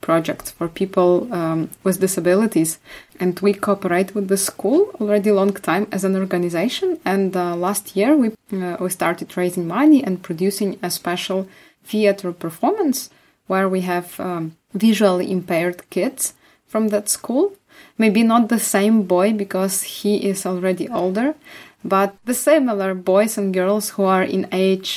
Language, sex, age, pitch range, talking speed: English, female, 20-39, 180-210 Hz, 155 wpm